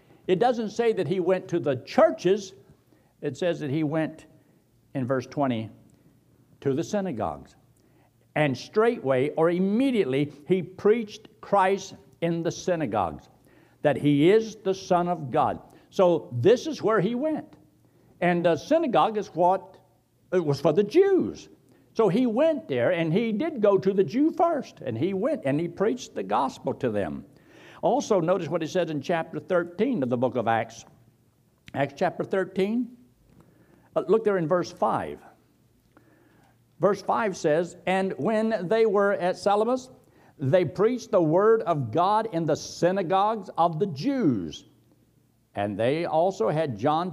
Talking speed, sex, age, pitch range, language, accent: 155 wpm, male, 60-79, 150-200 Hz, English, American